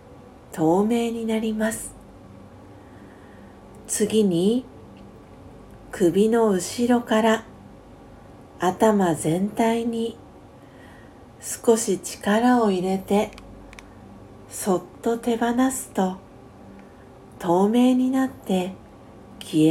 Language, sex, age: Japanese, female, 50-69